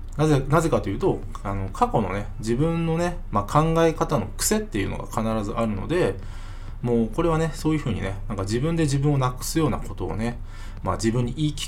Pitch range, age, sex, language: 100-135 Hz, 20-39, male, Japanese